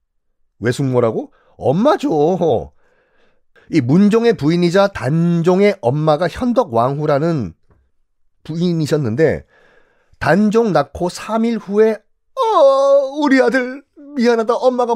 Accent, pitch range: native, 145-230 Hz